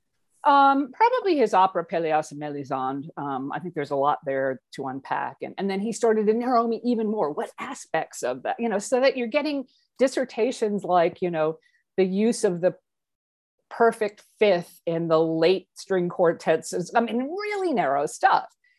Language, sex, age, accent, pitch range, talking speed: English, female, 50-69, American, 155-225 Hz, 180 wpm